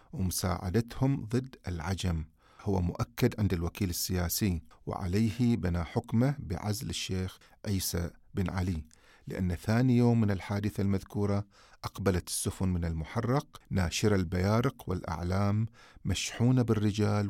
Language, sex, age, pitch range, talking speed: Arabic, male, 40-59, 90-110 Hz, 110 wpm